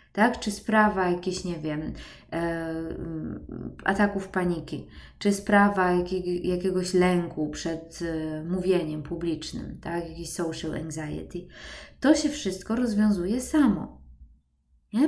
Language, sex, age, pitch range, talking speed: Polish, female, 20-39, 165-225 Hz, 110 wpm